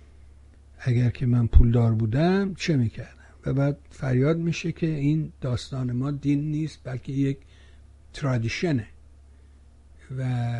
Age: 60-79